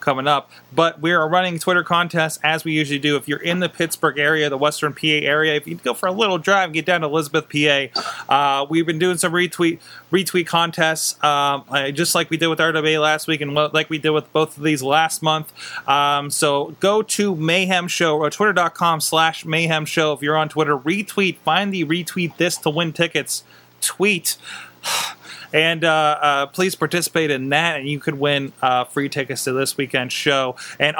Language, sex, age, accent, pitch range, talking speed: English, male, 30-49, American, 150-180 Hz, 200 wpm